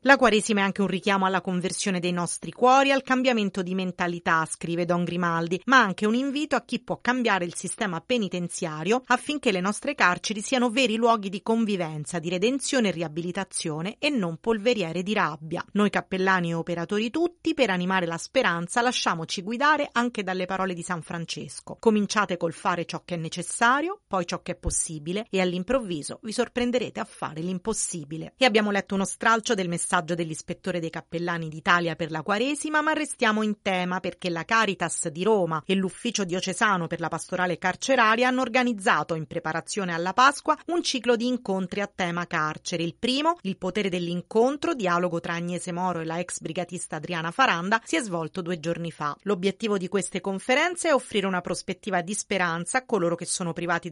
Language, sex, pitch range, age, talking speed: Italian, female, 175-230 Hz, 40-59, 180 wpm